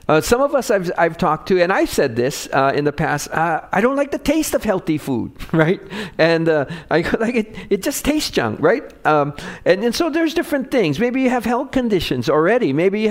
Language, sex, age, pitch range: English, male, 50-69, 145-225 Hz